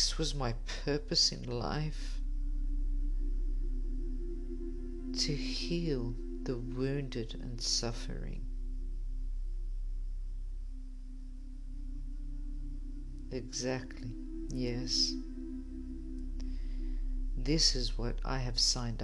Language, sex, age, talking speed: English, female, 50-69, 65 wpm